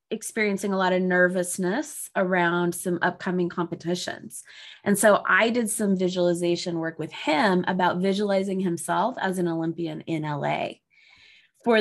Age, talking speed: 20-39, 135 wpm